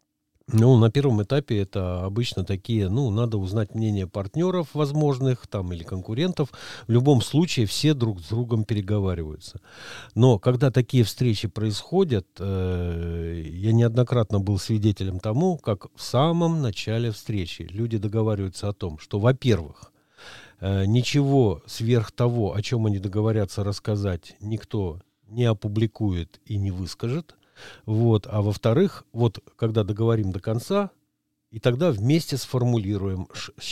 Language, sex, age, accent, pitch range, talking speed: Russian, male, 50-69, native, 100-125 Hz, 130 wpm